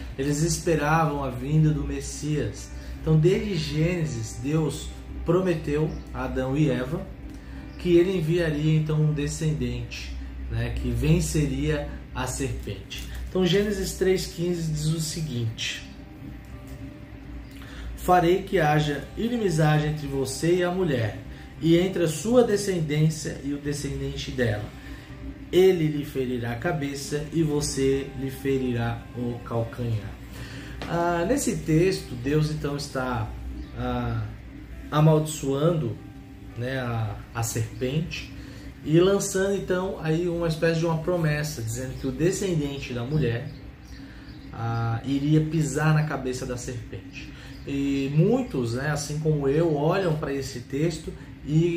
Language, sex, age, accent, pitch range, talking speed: Portuguese, male, 20-39, Brazilian, 130-165 Hz, 125 wpm